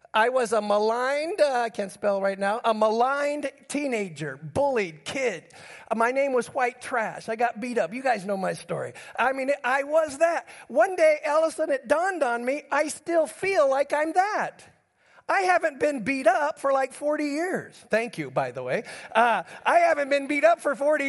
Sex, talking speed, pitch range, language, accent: male, 200 wpm, 245-310 Hz, English, American